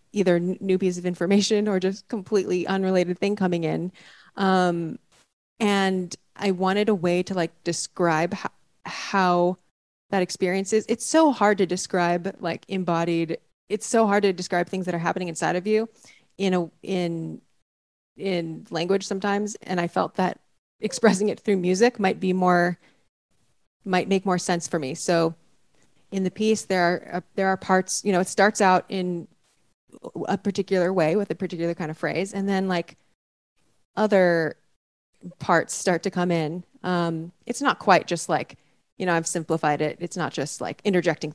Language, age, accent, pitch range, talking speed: English, 30-49, American, 170-195 Hz, 170 wpm